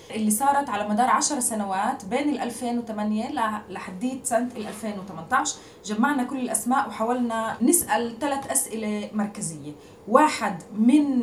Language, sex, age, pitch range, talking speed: Arabic, female, 20-39, 210-260 Hz, 110 wpm